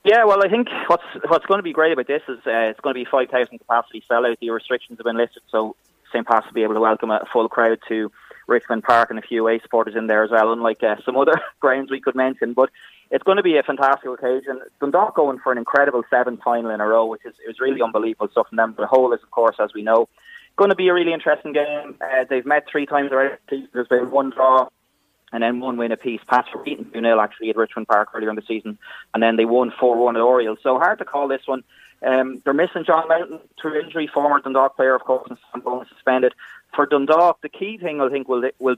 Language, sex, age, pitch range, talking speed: English, male, 20-39, 115-145 Hz, 250 wpm